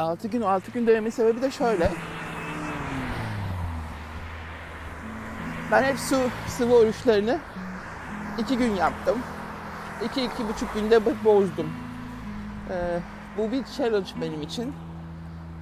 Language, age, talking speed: Turkish, 60-79, 105 wpm